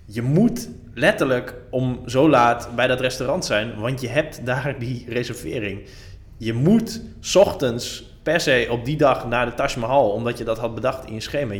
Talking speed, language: 185 wpm, Dutch